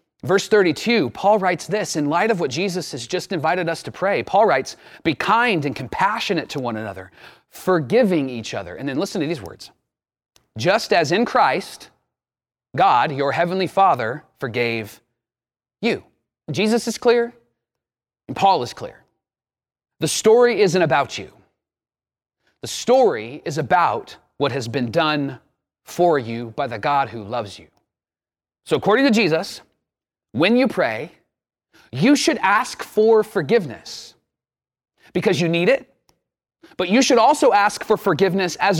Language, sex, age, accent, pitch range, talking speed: English, male, 30-49, American, 130-215 Hz, 150 wpm